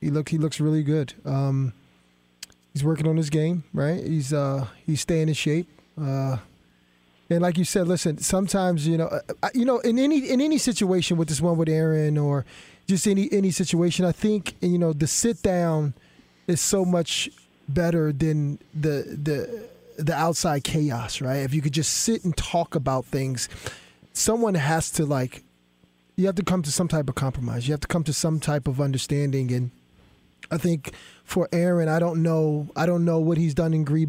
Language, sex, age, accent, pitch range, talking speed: English, male, 20-39, American, 145-170 Hz, 195 wpm